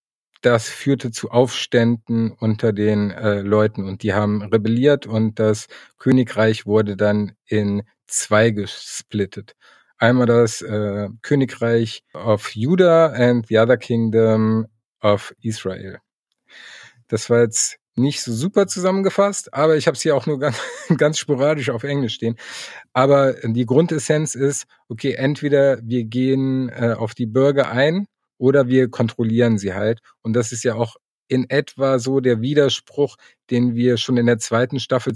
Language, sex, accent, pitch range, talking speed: German, male, German, 110-135 Hz, 150 wpm